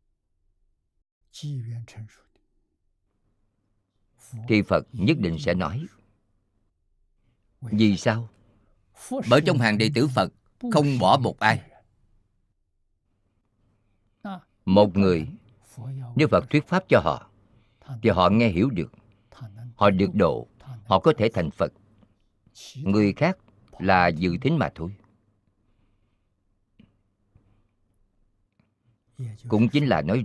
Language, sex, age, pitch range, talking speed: Vietnamese, male, 50-69, 100-110 Hz, 100 wpm